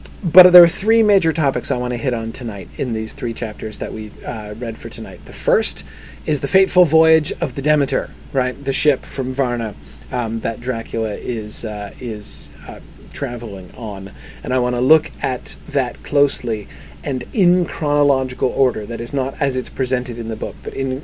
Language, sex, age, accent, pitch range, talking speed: English, male, 30-49, American, 120-175 Hz, 195 wpm